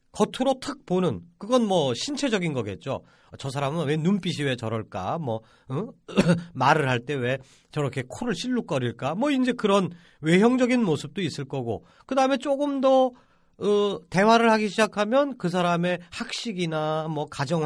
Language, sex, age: Korean, male, 40-59